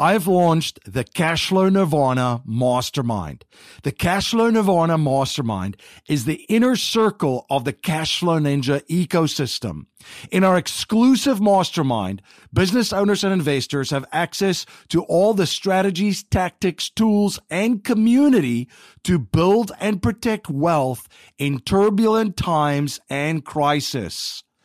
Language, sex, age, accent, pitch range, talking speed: English, male, 50-69, American, 145-205 Hz, 115 wpm